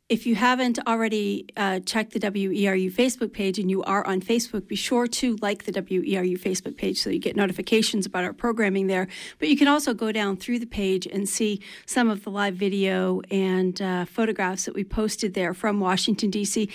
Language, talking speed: English, 205 wpm